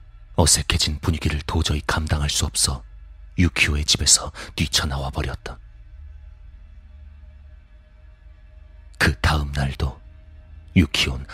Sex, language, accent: male, Korean, native